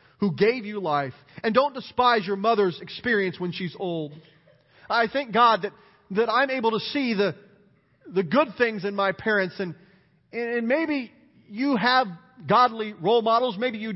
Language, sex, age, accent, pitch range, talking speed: English, male, 40-59, American, 160-230 Hz, 170 wpm